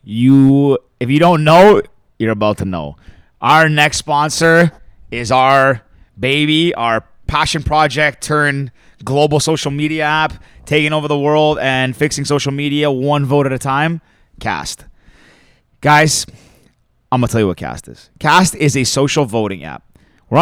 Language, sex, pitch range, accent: English, male, 100-145 Hz, American